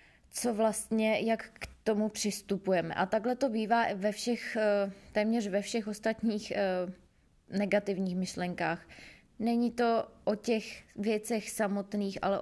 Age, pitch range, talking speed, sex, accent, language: 20-39, 200-230 Hz, 110 wpm, female, native, Czech